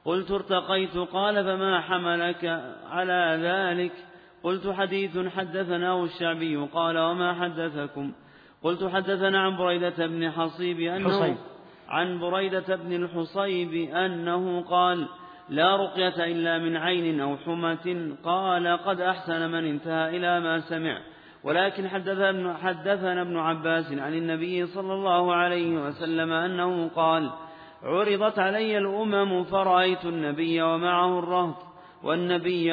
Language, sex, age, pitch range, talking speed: Arabic, male, 40-59, 165-185 Hz, 115 wpm